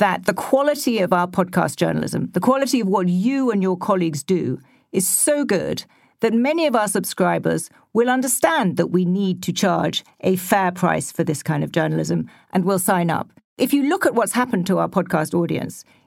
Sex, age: female, 50-69